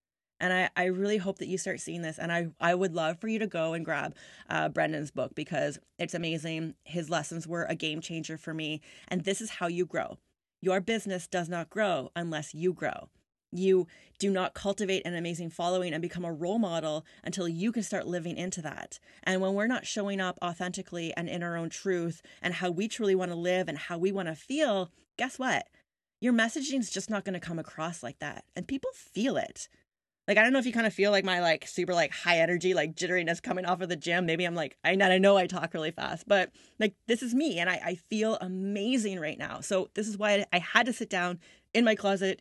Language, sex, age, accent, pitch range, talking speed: English, female, 30-49, American, 170-205 Hz, 235 wpm